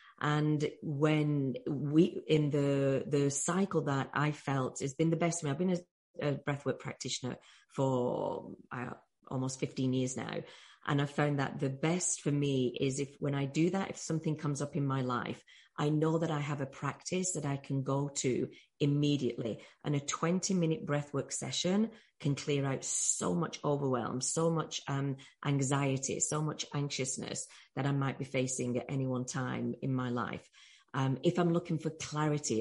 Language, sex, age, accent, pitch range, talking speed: English, female, 30-49, British, 135-150 Hz, 180 wpm